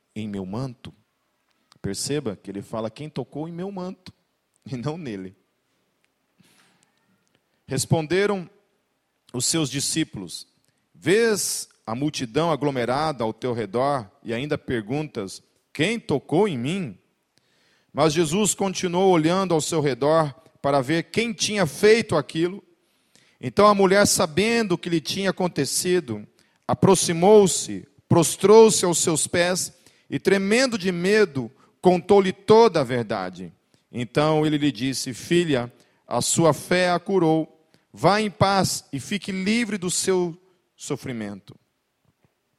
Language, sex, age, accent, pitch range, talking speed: Portuguese, male, 40-59, Brazilian, 130-180 Hz, 125 wpm